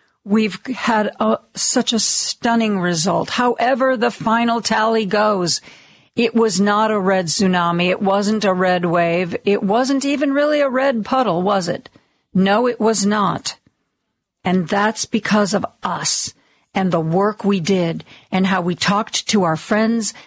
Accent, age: American, 50-69